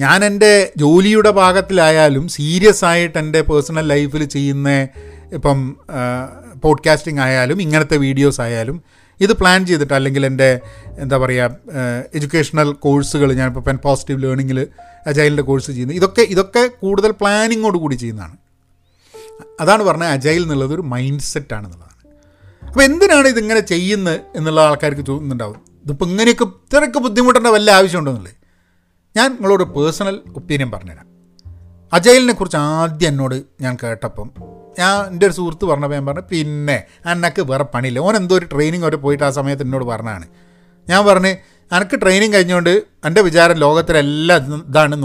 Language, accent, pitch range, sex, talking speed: Malayalam, native, 130-180 Hz, male, 130 wpm